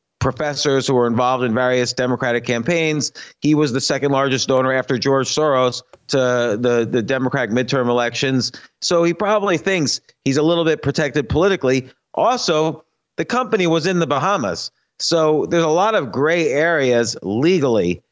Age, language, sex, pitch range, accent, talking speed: 40-59, English, male, 130-165 Hz, American, 160 wpm